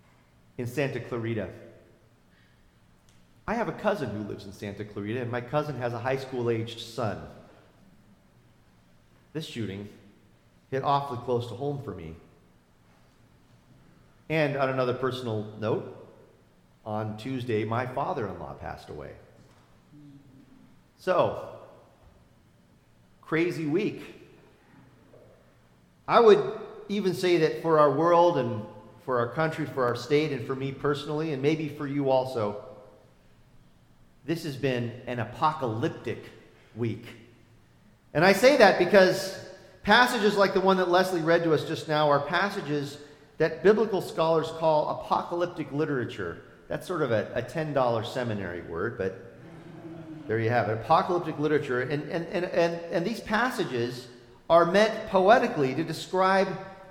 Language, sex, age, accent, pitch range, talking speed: English, male, 40-59, American, 115-165 Hz, 135 wpm